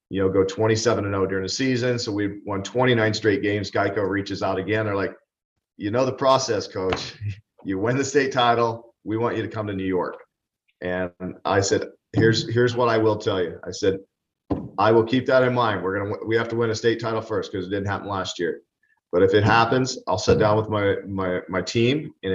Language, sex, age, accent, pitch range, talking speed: English, male, 40-59, American, 95-115 Hz, 230 wpm